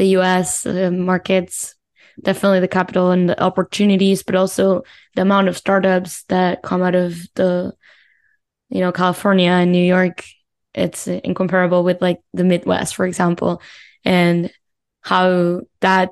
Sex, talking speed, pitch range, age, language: female, 145 wpm, 180-200 Hz, 10-29, English